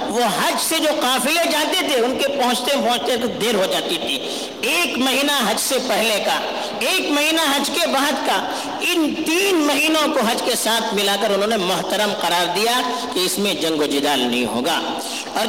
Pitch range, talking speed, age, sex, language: 215-305 Hz, 200 wpm, 50-69, female, Urdu